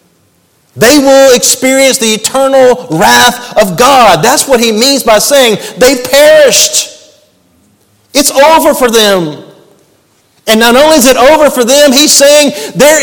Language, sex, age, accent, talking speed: English, male, 50-69, American, 145 wpm